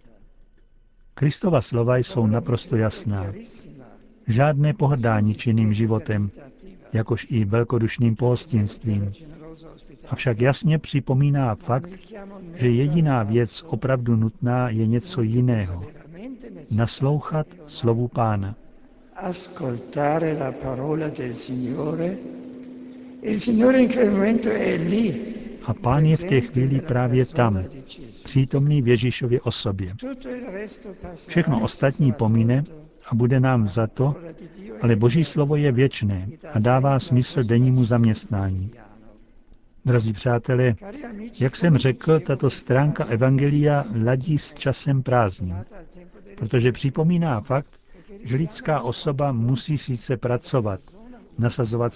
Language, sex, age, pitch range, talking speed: Czech, male, 60-79, 120-155 Hz, 90 wpm